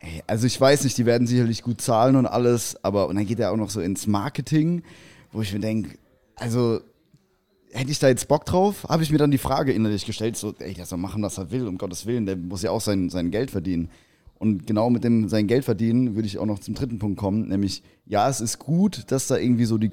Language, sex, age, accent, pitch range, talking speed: German, male, 20-39, German, 105-125 Hz, 255 wpm